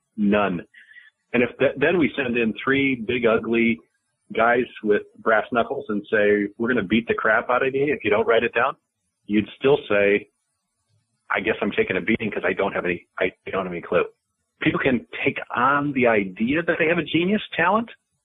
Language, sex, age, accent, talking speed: English, male, 40-59, American, 205 wpm